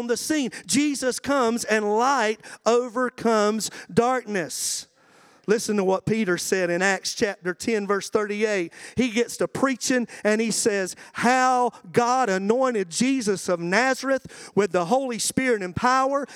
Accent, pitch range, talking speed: American, 210-265 Hz, 140 wpm